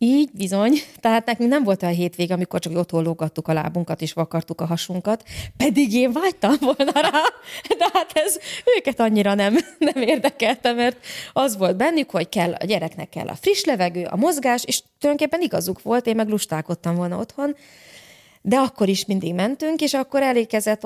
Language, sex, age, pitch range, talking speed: Hungarian, female, 30-49, 175-275 Hz, 175 wpm